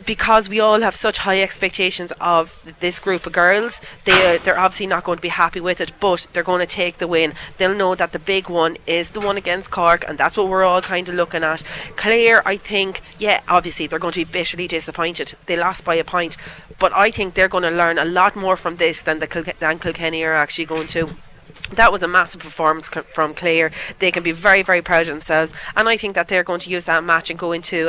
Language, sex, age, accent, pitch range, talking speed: English, female, 30-49, Irish, 160-185 Hz, 250 wpm